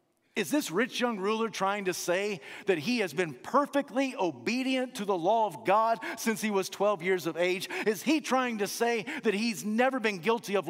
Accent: American